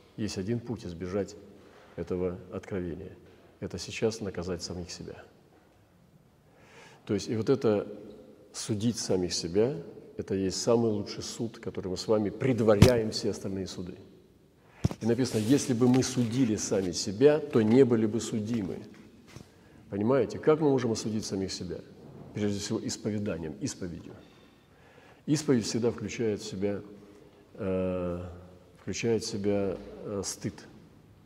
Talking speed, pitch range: 125 wpm, 95-115 Hz